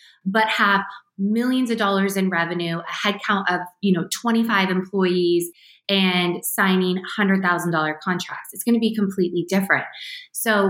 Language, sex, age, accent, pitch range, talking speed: English, female, 20-39, American, 170-200 Hz, 140 wpm